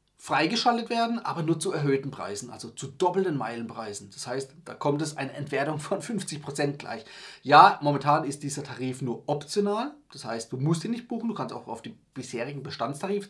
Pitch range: 130-175 Hz